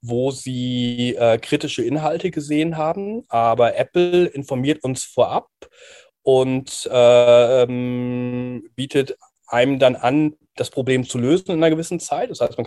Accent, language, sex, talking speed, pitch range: German, German, male, 140 wpm, 120-150 Hz